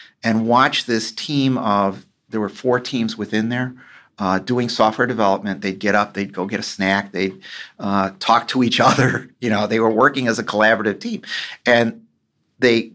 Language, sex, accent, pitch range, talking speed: English, male, American, 95-125 Hz, 185 wpm